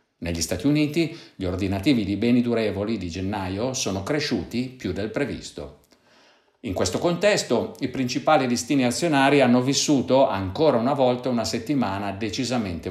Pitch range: 90-125 Hz